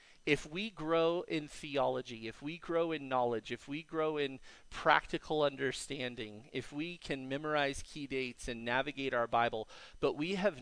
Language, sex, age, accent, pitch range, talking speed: English, male, 40-59, American, 125-160 Hz, 165 wpm